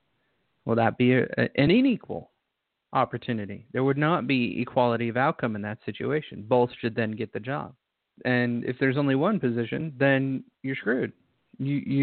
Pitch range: 120-150 Hz